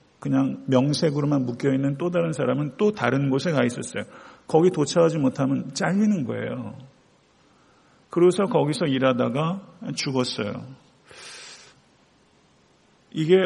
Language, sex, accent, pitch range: Korean, male, native, 130-165 Hz